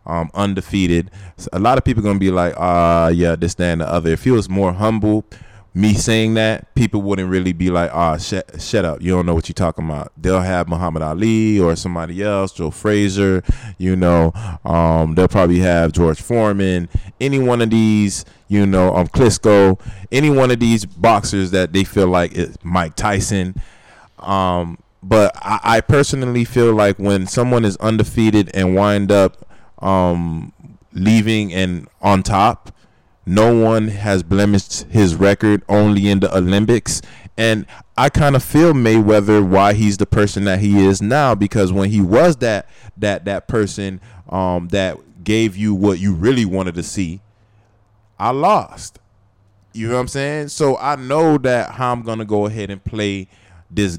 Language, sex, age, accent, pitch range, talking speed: English, male, 20-39, American, 90-110 Hz, 175 wpm